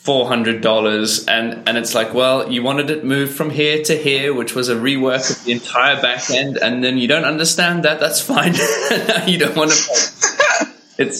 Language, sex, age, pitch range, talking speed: English, male, 20-39, 110-145 Hz, 200 wpm